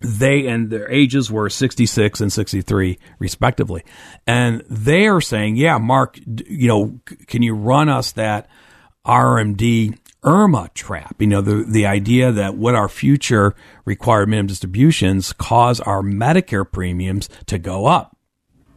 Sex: male